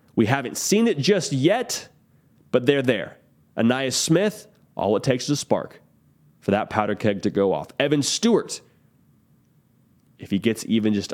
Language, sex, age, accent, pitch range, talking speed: English, male, 30-49, American, 115-165 Hz, 165 wpm